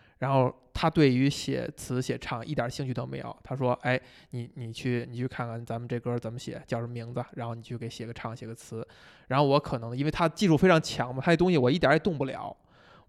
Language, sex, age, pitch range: Chinese, male, 20-39, 125-155 Hz